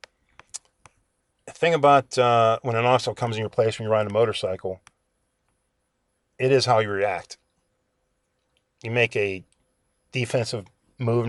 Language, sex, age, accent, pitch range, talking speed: English, male, 50-69, American, 110-140 Hz, 140 wpm